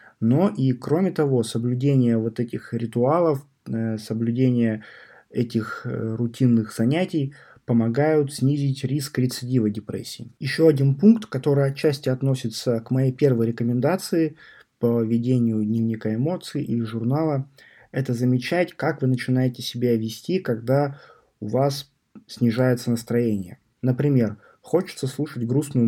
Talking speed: 115 wpm